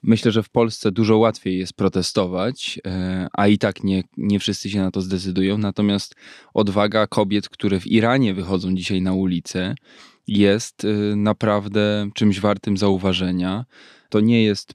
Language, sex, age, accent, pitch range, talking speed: Polish, male, 20-39, native, 100-120 Hz, 145 wpm